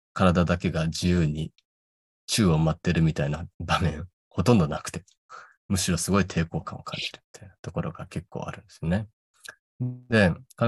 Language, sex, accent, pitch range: Japanese, male, native, 80-100 Hz